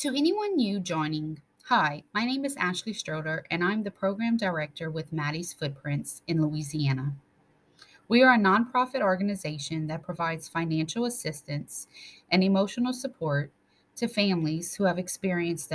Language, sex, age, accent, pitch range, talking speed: English, female, 30-49, American, 155-215 Hz, 140 wpm